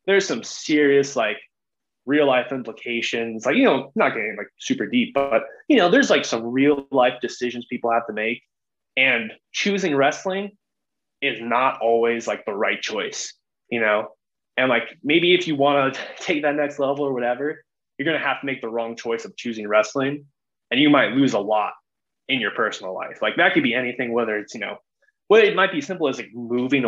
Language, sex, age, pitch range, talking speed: English, male, 20-39, 115-170 Hz, 205 wpm